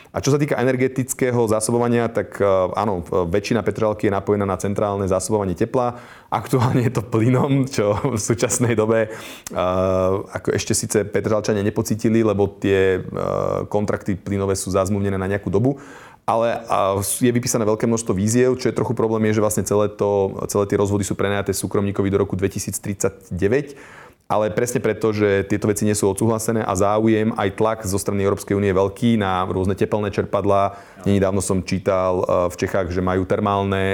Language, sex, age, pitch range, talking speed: Slovak, male, 30-49, 100-110 Hz, 165 wpm